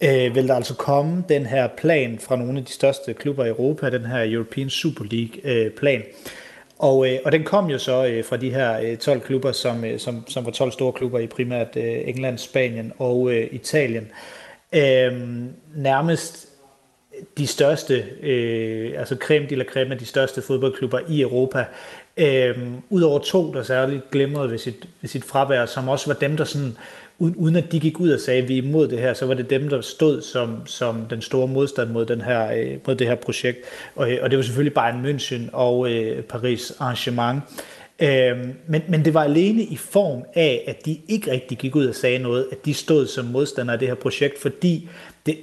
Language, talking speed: Danish, 185 wpm